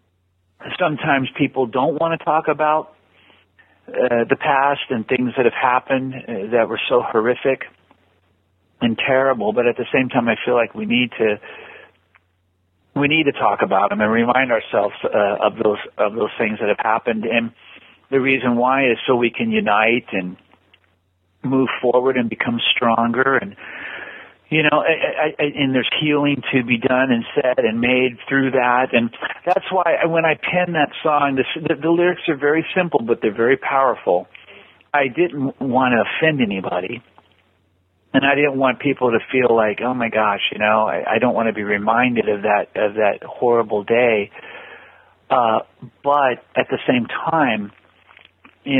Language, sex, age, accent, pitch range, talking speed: English, male, 50-69, American, 110-140 Hz, 165 wpm